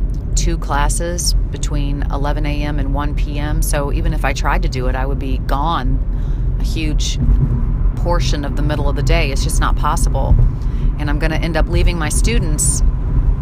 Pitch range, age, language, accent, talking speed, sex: 130-150 Hz, 30-49, English, American, 185 wpm, female